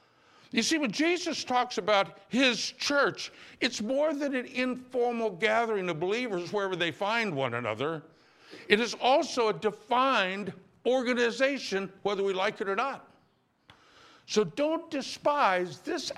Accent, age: American, 60-79